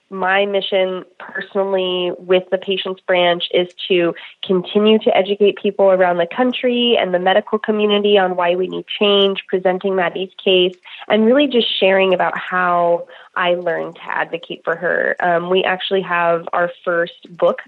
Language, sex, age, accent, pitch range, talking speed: English, female, 20-39, American, 175-205 Hz, 160 wpm